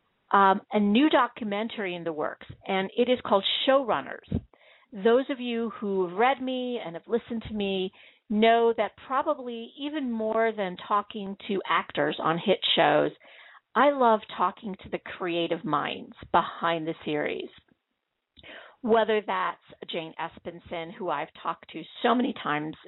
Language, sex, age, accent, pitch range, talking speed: English, female, 50-69, American, 160-215 Hz, 150 wpm